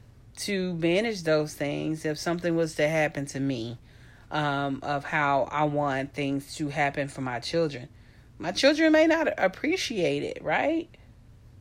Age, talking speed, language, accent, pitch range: 40-59, 150 wpm, English, American, 145-200 Hz